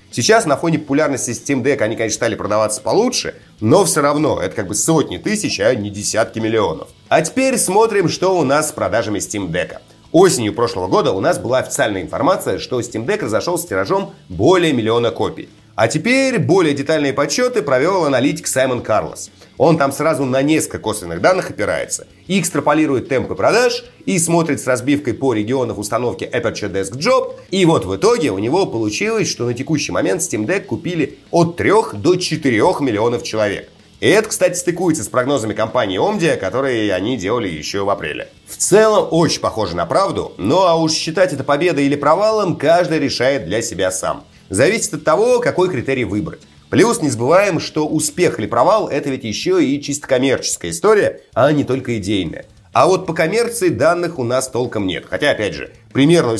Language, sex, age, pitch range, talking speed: Russian, male, 30-49, 115-175 Hz, 180 wpm